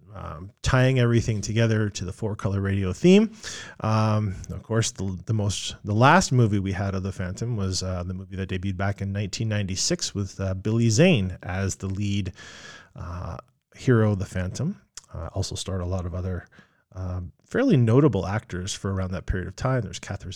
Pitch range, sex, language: 95-125 Hz, male, English